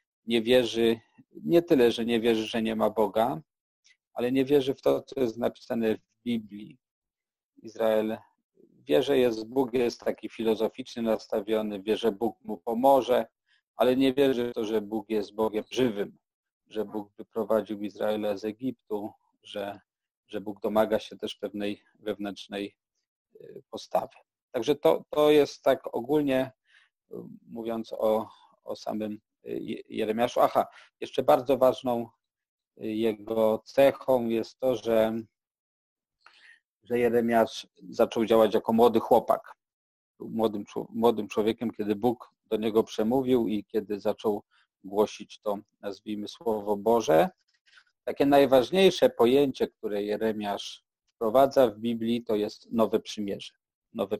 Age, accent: 40-59, native